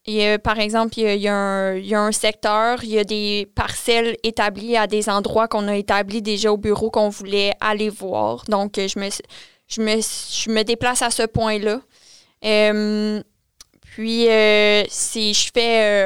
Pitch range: 200-220 Hz